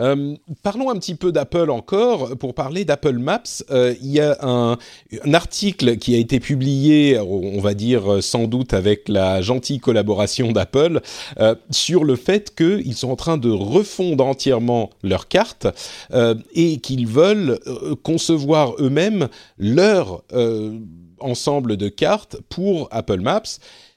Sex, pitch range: male, 100-145 Hz